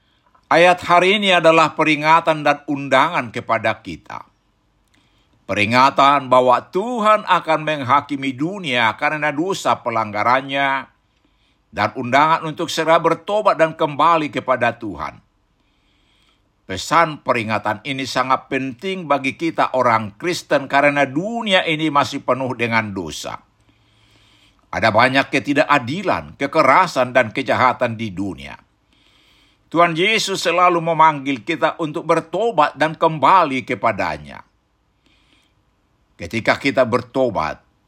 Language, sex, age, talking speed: Indonesian, male, 60-79, 100 wpm